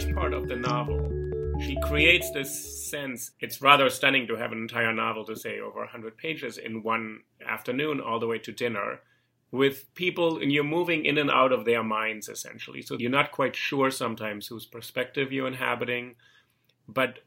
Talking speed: 180 wpm